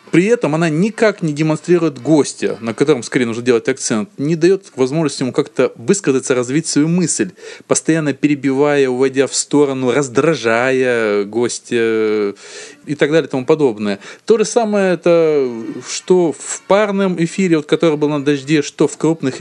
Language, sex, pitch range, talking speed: Russian, male, 125-175 Hz, 150 wpm